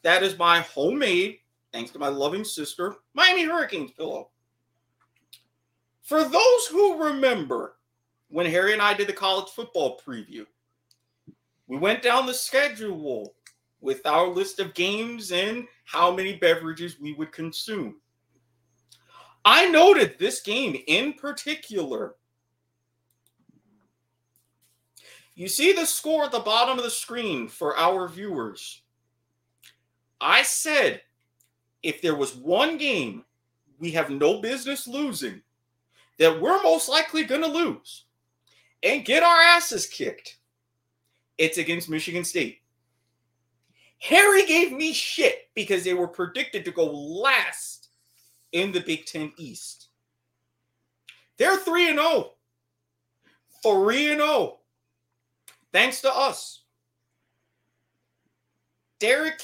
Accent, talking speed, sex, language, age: American, 115 wpm, male, English, 30-49